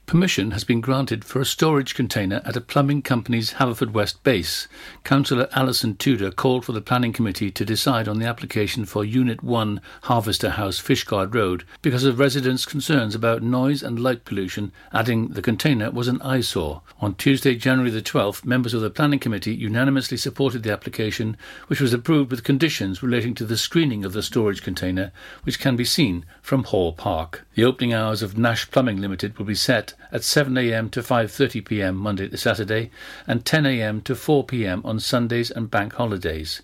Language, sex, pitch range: English, male, 105-135 Hz